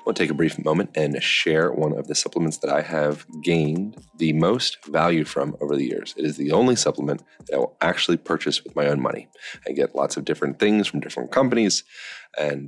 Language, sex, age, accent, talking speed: English, male, 30-49, American, 220 wpm